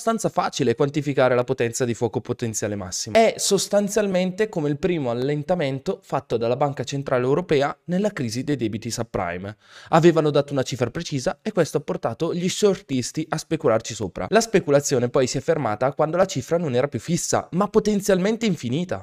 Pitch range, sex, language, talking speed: 115-155 Hz, male, Italian, 170 wpm